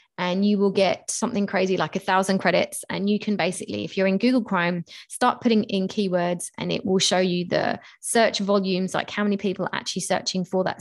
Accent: British